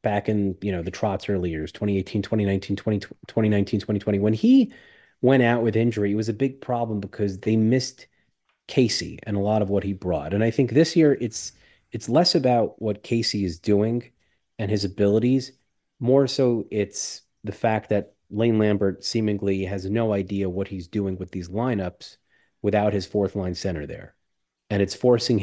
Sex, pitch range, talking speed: male, 95-110 Hz, 185 wpm